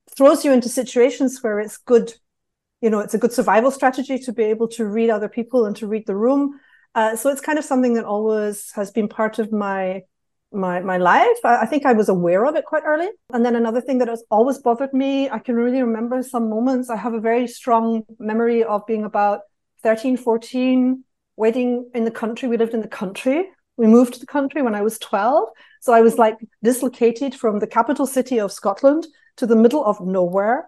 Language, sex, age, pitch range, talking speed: English, female, 40-59, 215-255 Hz, 220 wpm